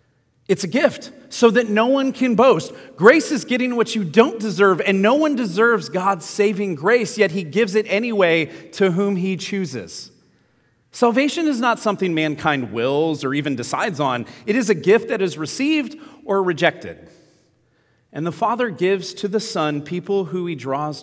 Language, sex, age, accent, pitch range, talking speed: English, male, 30-49, American, 140-200 Hz, 175 wpm